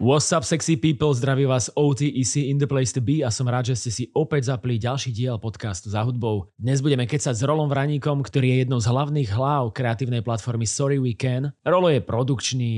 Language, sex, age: English, male, 30-49